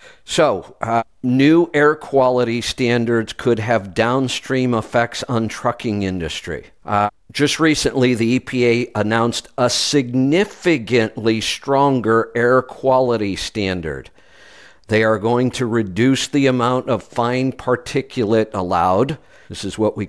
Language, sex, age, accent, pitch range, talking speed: English, male, 50-69, American, 105-125 Hz, 120 wpm